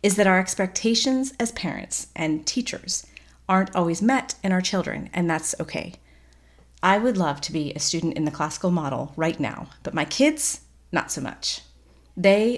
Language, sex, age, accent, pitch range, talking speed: English, female, 40-59, American, 150-195 Hz, 175 wpm